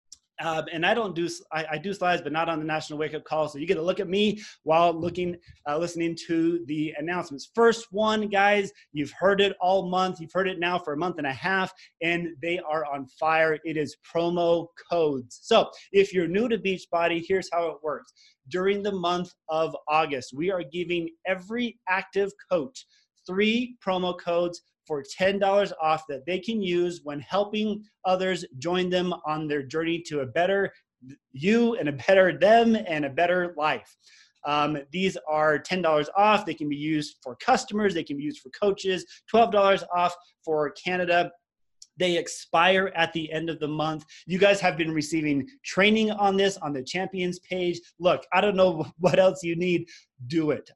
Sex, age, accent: male, 30-49, American